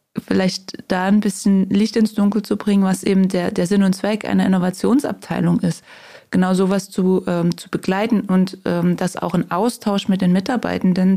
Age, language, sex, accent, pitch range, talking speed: 20-39, German, female, German, 170-200 Hz, 185 wpm